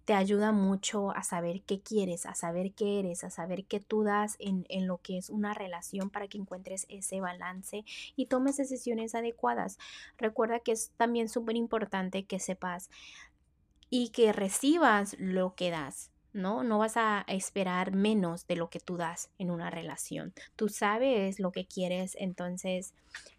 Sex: female